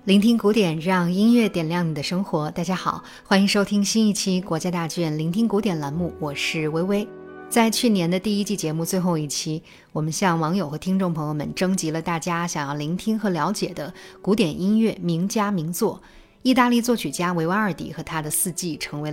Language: Chinese